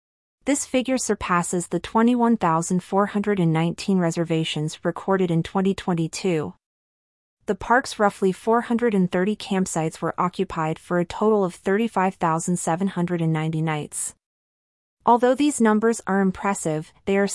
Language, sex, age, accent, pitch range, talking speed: English, female, 30-49, American, 170-210 Hz, 100 wpm